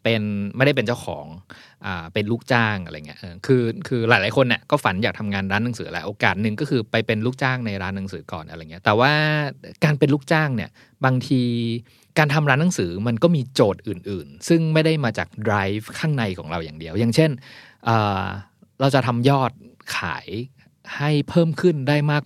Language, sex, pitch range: Thai, male, 105-145 Hz